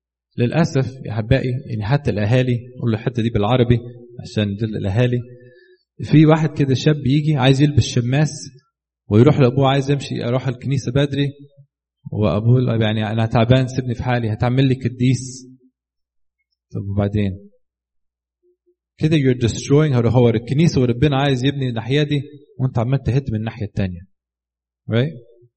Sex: male